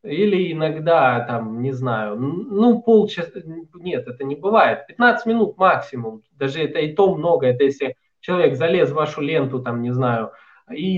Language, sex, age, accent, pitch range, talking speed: Russian, male, 20-39, native, 135-205 Hz, 165 wpm